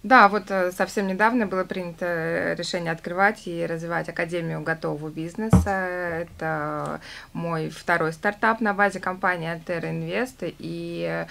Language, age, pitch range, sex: Russian, 20-39, 160-190 Hz, female